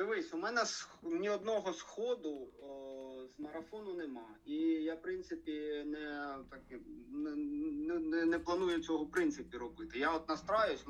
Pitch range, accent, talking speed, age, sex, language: 140-200 Hz, native, 150 wpm, 30-49, male, Ukrainian